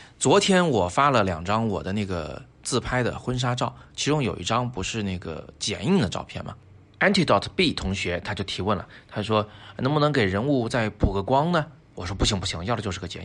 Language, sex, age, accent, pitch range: Chinese, male, 20-39, native, 95-125 Hz